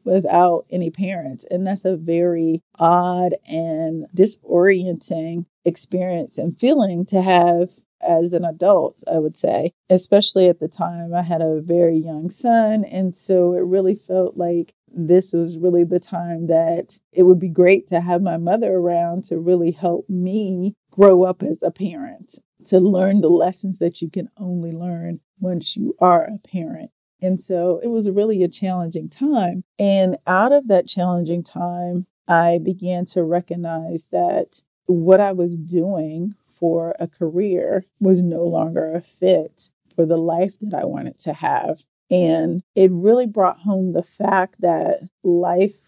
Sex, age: female, 40-59